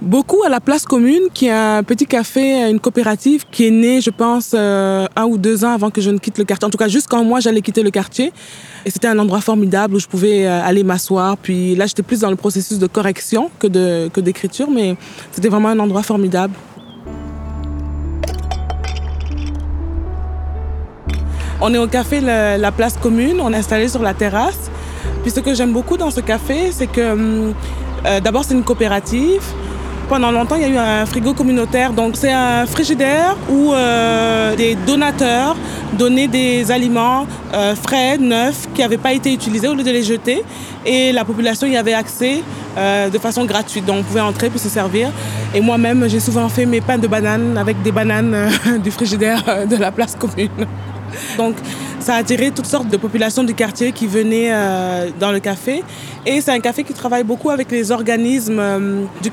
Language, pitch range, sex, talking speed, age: French, 200-245 Hz, female, 190 wpm, 20-39